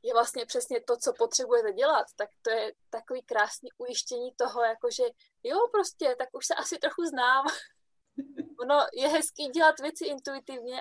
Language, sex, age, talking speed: Czech, female, 20-39, 160 wpm